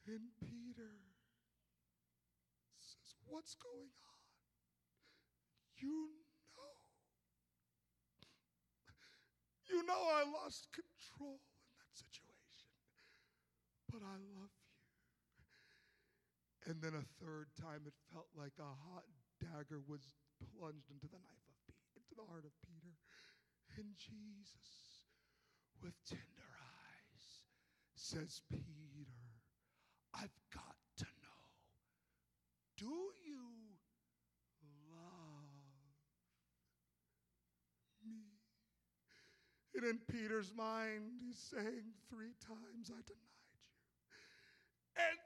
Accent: American